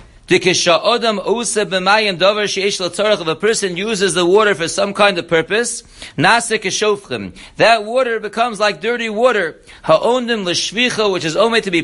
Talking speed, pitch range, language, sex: 110 wpm, 180-220 Hz, English, male